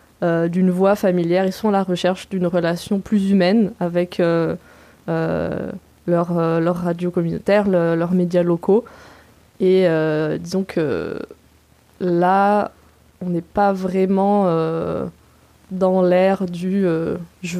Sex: female